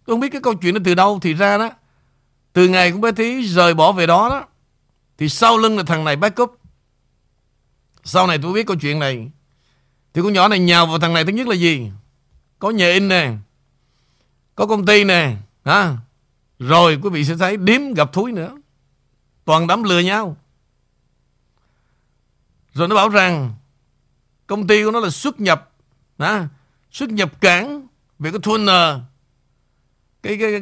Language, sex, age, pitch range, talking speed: Vietnamese, male, 60-79, 135-205 Hz, 180 wpm